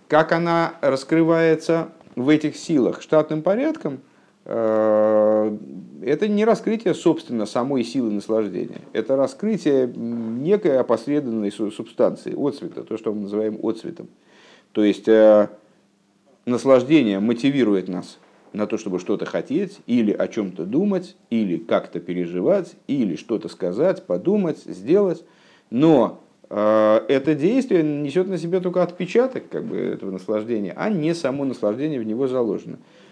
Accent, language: native, Russian